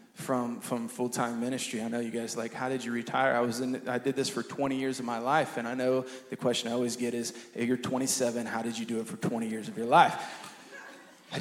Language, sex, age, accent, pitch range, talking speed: English, male, 20-39, American, 115-130 Hz, 260 wpm